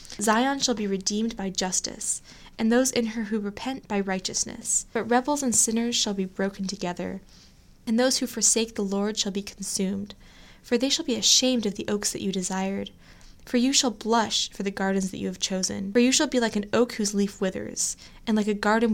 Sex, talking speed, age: female, 210 wpm, 10-29